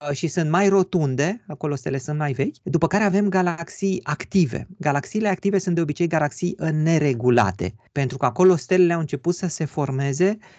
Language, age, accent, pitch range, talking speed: Romanian, 30-49, native, 135-170 Hz, 170 wpm